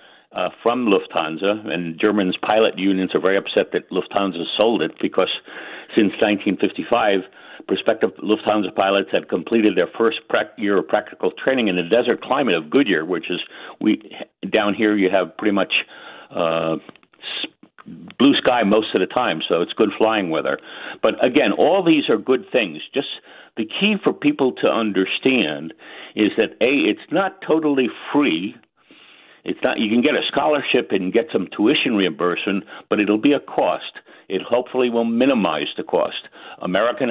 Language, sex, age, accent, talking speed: English, male, 60-79, American, 160 wpm